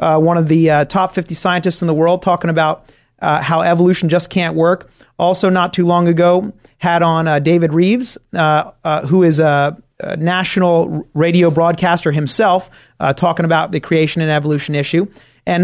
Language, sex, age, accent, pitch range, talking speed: English, male, 30-49, American, 160-195 Hz, 185 wpm